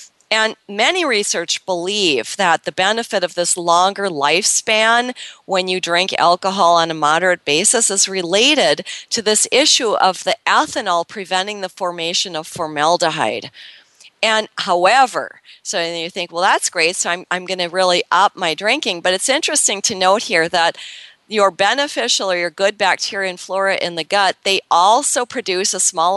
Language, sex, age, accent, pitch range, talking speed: English, female, 40-59, American, 170-210 Hz, 165 wpm